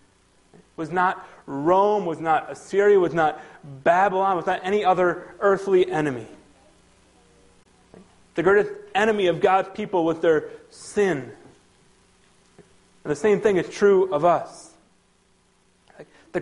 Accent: American